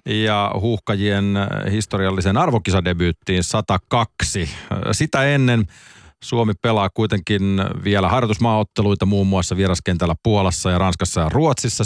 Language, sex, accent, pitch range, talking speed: Finnish, male, native, 90-110 Hz, 100 wpm